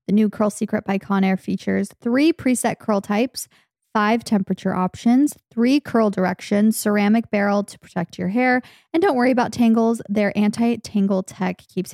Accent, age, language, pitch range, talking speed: American, 20-39, English, 190-230 Hz, 160 wpm